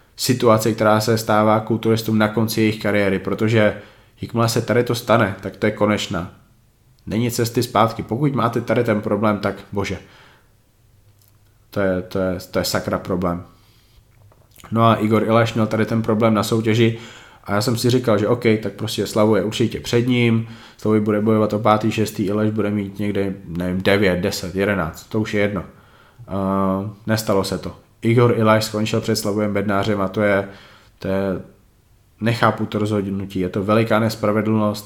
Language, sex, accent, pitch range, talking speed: Czech, male, native, 100-110 Hz, 175 wpm